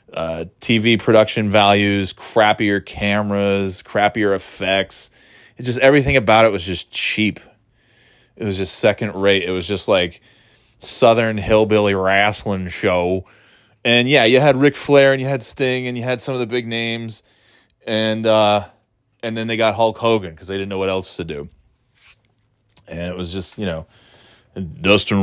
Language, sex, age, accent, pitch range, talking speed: English, male, 20-39, American, 95-120 Hz, 165 wpm